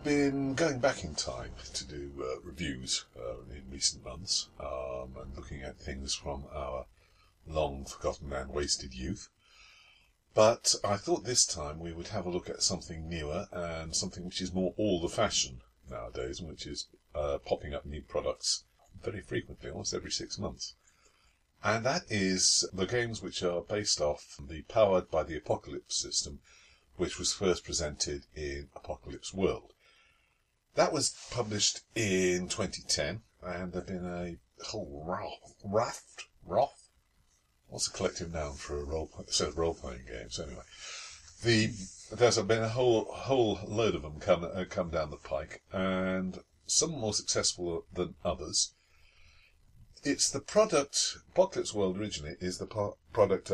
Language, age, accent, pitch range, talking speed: English, 50-69, British, 75-95 Hz, 150 wpm